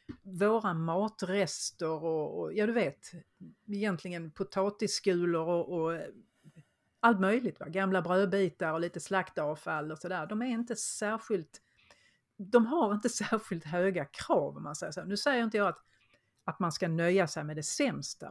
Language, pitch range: Swedish, 160-205 Hz